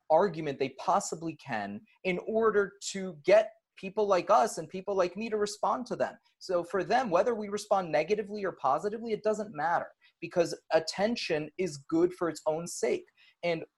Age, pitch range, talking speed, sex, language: 30-49, 135-195 Hz, 175 wpm, male, English